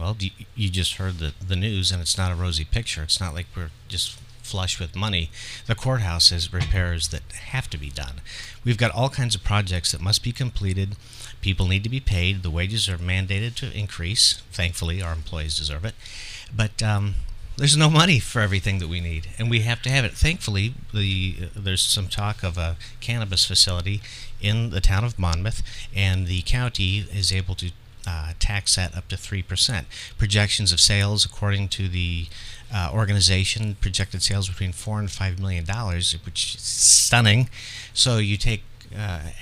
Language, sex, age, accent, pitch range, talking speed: English, male, 50-69, American, 90-110 Hz, 185 wpm